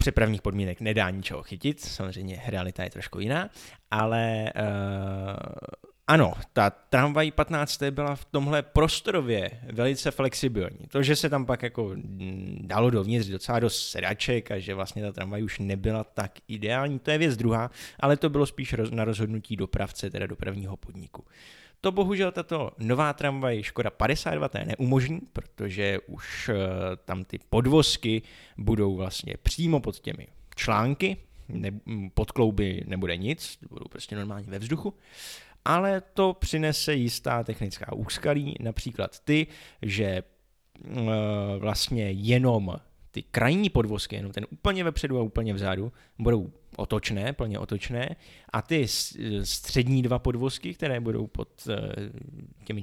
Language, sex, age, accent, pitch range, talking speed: Czech, male, 20-39, native, 100-130 Hz, 135 wpm